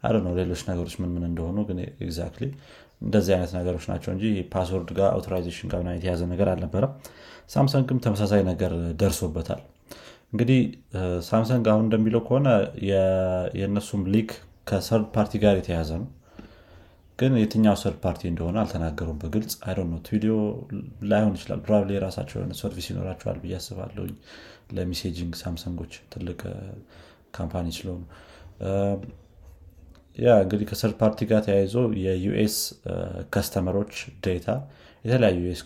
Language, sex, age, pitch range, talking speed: Amharic, male, 30-49, 85-105 Hz, 110 wpm